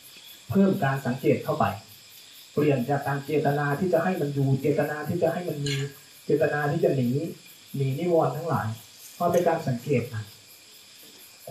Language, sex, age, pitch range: Thai, male, 20-39, 125-155 Hz